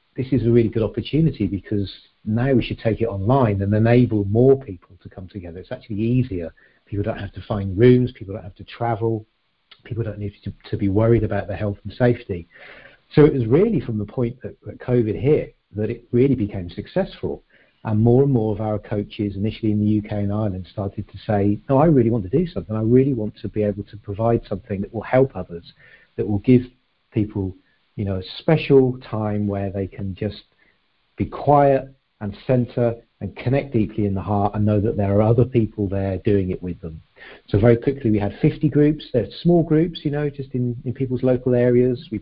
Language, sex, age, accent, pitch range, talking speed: English, male, 50-69, British, 105-125 Hz, 215 wpm